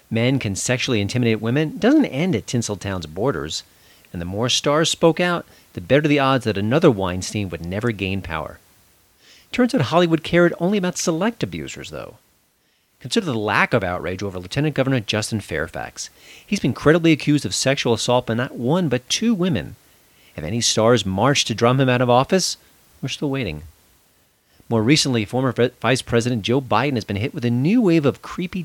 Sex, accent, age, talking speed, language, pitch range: male, American, 40-59, 185 wpm, English, 95-145 Hz